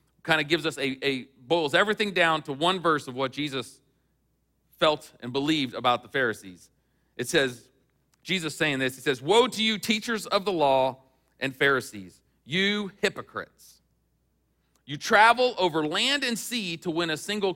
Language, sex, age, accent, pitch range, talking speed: English, male, 40-59, American, 135-180 Hz, 170 wpm